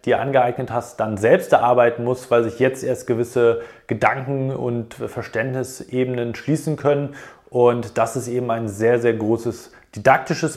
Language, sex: German, male